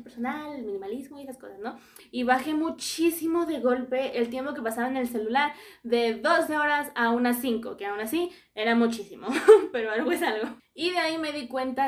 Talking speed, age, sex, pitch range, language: 200 wpm, 20-39, female, 230-290 Hz, Spanish